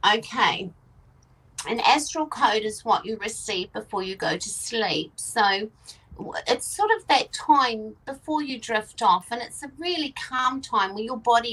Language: English